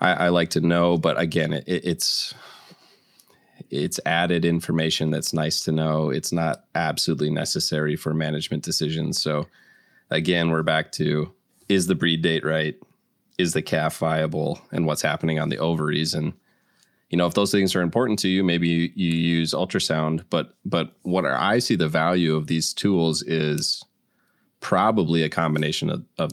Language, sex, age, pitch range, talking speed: English, male, 20-39, 80-85 Hz, 170 wpm